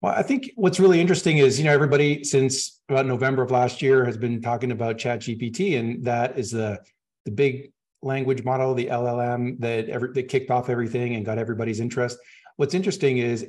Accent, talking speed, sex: American, 200 wpm, male